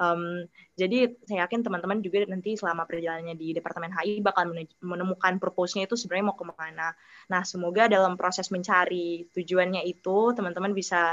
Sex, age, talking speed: female, 20-39, 155 wpm